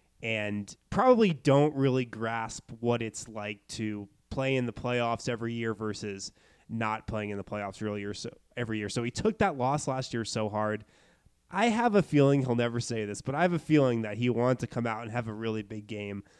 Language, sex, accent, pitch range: English, male, American, 115-145 Hz